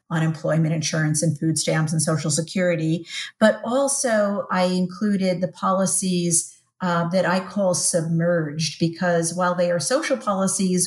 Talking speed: 140 wpm